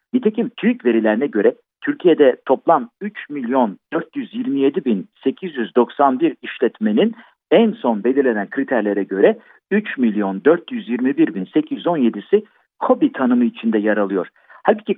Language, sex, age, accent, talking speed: Turkish, male, 50-69, native, 110 wpm